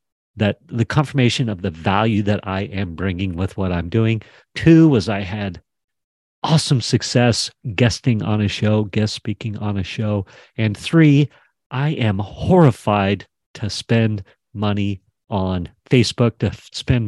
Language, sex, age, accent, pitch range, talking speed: English, male, 40-59, American, 95-120 Hz, 145 wpm